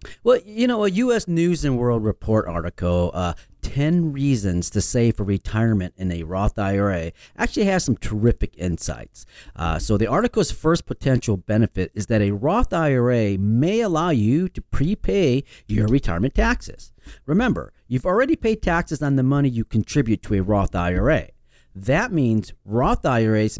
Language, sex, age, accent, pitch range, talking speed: English, male, 40-59, American, 105-155 Hz, 165 wpm